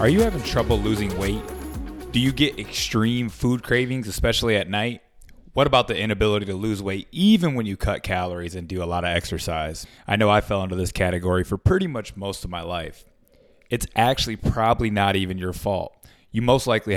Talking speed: 200 wpm